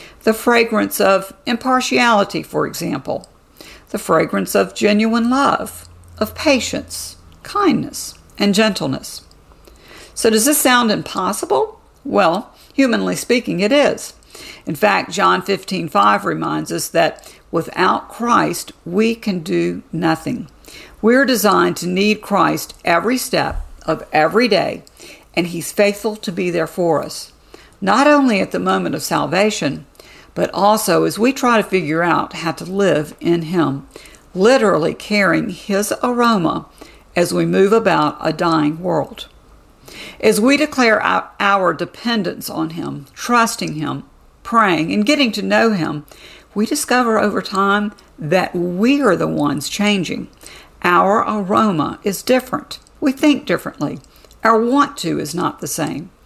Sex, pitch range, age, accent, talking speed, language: female, 175-240 Hz, 50-69, American, 135 wpm, English